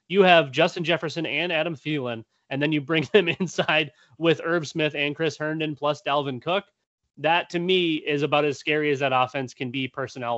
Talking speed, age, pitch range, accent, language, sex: 200 wpm, 30-49, 130-165 Hz, American, English, male